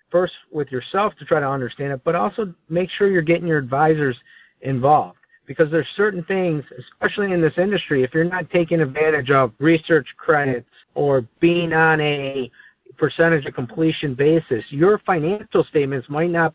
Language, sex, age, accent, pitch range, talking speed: English, male, 50-69, American, 125-165 Hz, 165 wpm